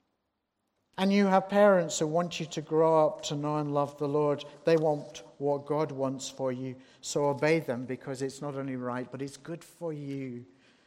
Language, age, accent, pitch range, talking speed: English, 50-69, British, 140-185 Hz, 200 wpm